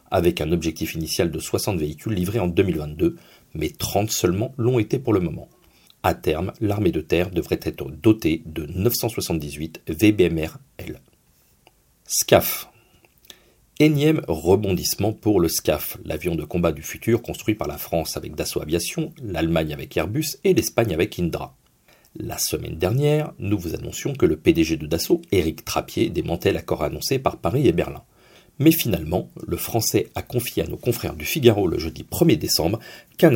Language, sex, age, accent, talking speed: French, male, 40-59, French, 165 wpm